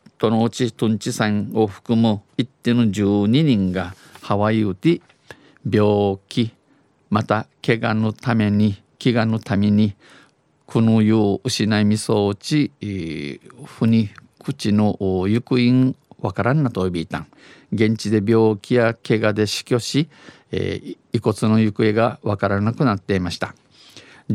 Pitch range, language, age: 105-125 Hz, Japanese, 50-69